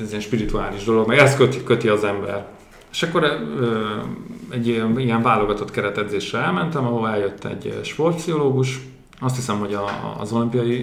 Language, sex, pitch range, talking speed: Hungarian, male, 105-135 Hz, 160 wpm